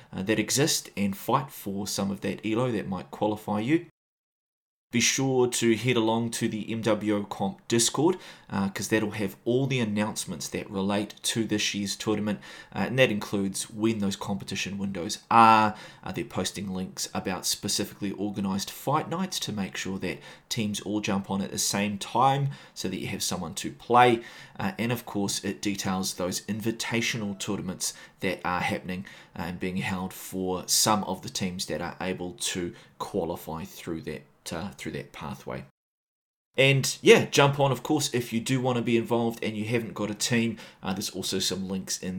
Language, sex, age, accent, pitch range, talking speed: English, male, 20-39, Australian, 95-115 Hz, 185 wpm